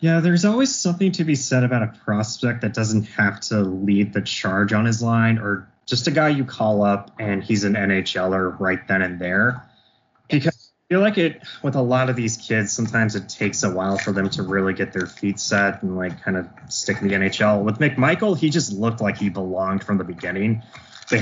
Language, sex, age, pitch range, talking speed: English, male, 20-39, 100-125 Hz, 225 wpm